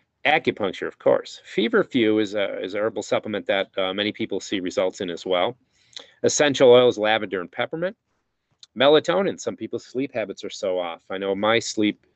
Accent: American